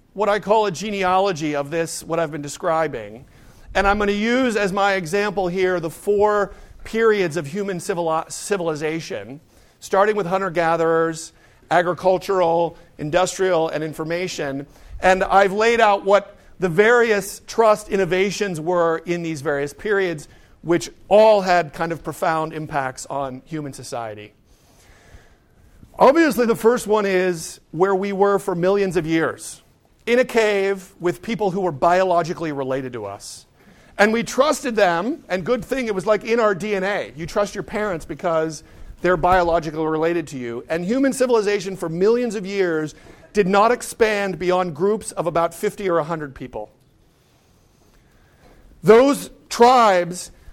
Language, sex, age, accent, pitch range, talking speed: English, male, 50-69, American, 160-205 Hz, 145 wpm